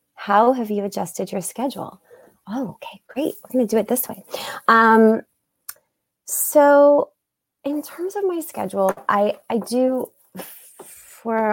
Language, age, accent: English, 30-49, American